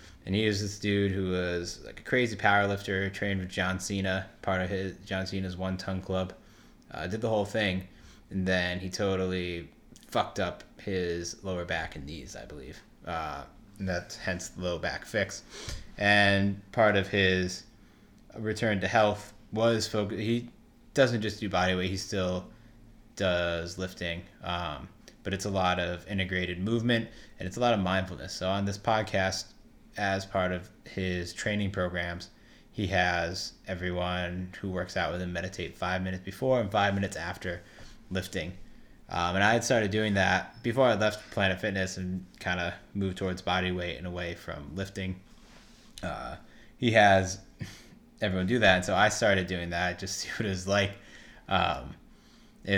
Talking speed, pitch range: 175 wpm, 90-105 Hz